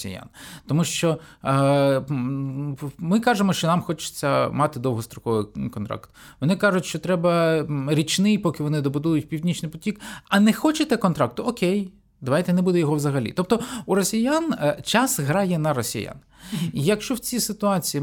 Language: Ukrainian